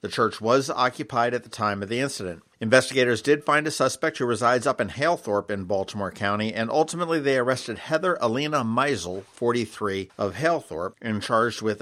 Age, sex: 50-69, male